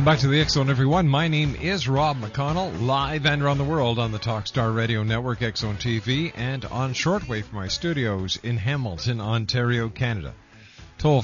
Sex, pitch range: male, 100-130 Hz